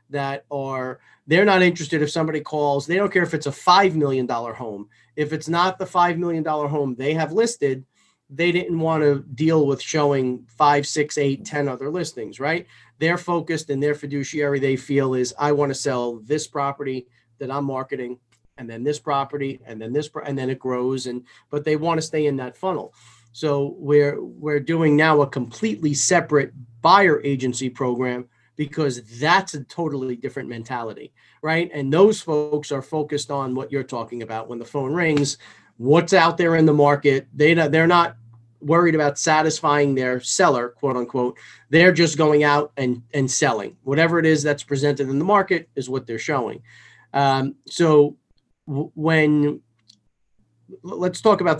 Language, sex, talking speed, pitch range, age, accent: English, male, 180 wpm, 130-155 Hz, 40-59, American